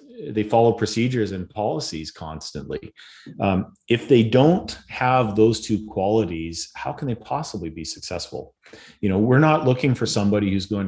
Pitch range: 90-110 Hz